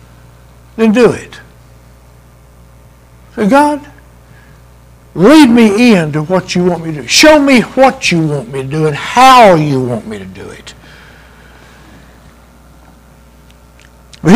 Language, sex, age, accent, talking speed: English, male, 60-79, American, 125 wpm